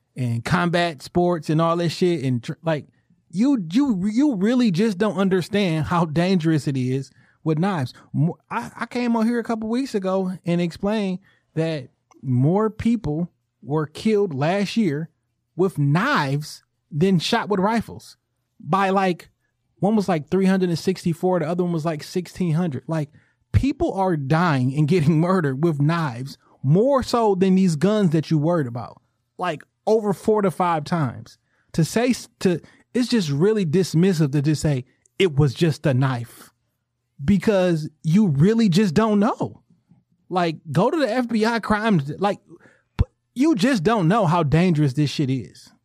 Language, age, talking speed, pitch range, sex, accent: English, 30-49, 155 wpm, 135-190 Hz, male, American